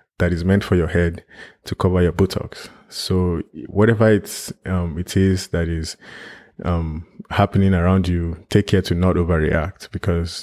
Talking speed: 160 wpm